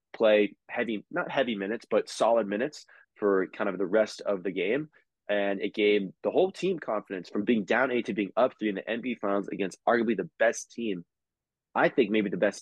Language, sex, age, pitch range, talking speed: English, male, 20-39, 100-120 Hz, 215 wpm